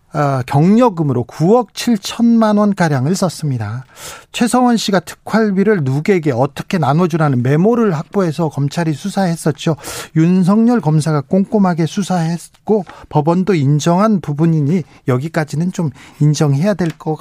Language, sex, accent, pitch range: Korean, male, native, 150-210 Hz